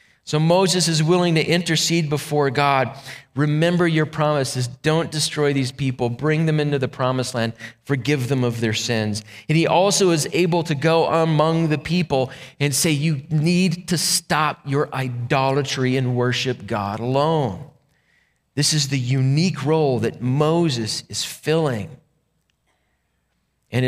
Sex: male